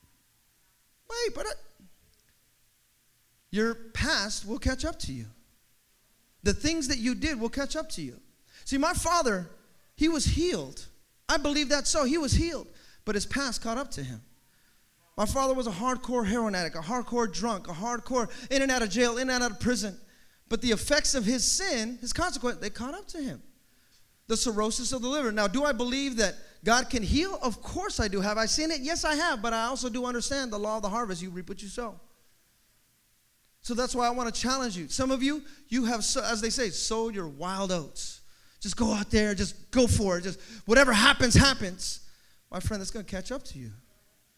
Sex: male